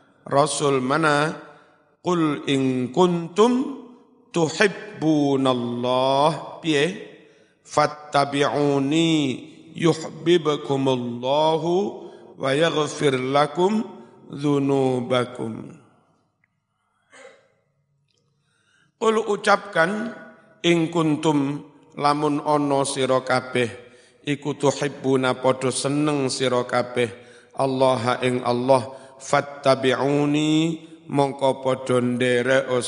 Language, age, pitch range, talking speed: Indonesian, 50-69, 130-160 Hz, 60 wpm